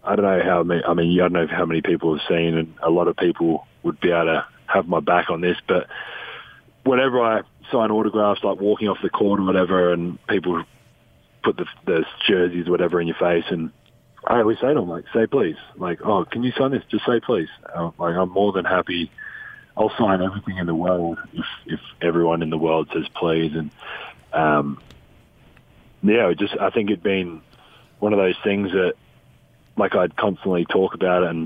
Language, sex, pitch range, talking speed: English, male, 85-100 Hz, 210 wpm